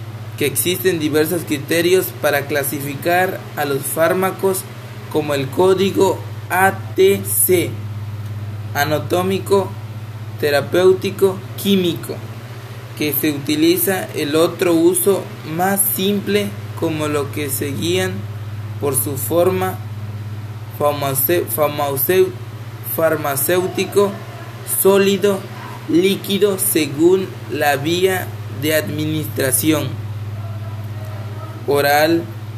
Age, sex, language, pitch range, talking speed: 20-39, male, Spanish, 110-160 Hz, 75 wpm